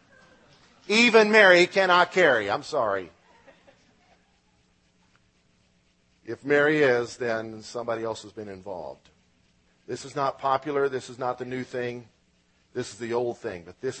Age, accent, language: 50-69, American, English